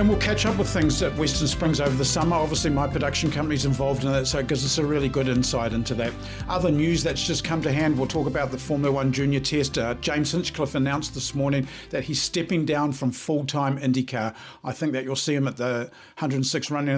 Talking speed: 235 wpm